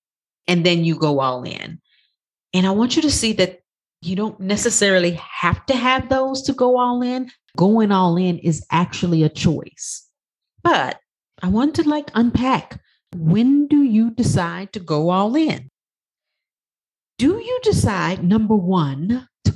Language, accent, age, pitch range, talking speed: English, American, 40-59, 145-205 Hz, 155 wpm